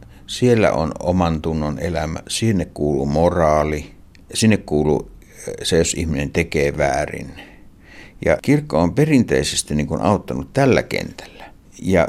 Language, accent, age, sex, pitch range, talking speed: Finnish, native, 60-79, male, 75-95 Hz, 120 wpm